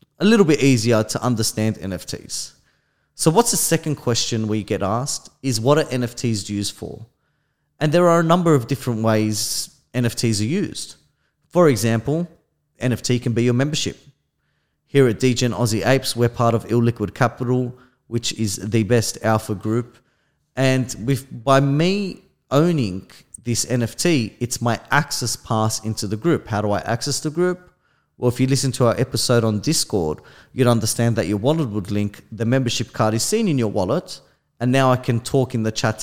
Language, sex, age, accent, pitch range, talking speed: English, male, 30-49, Australian, 110-145 Hz, 180 wpm